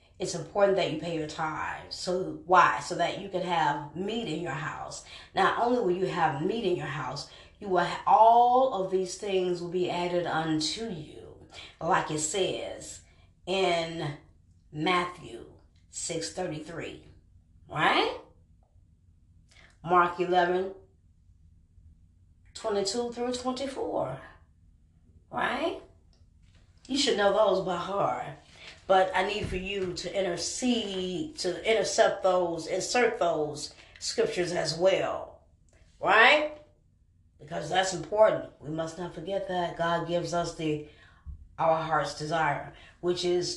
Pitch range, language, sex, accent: 120-185 Hz, English, female, American